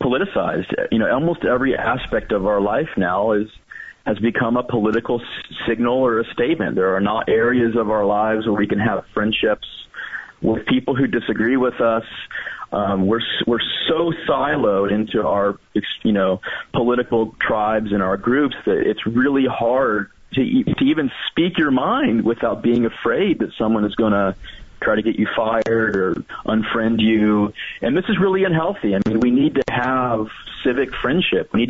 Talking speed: 180 wpm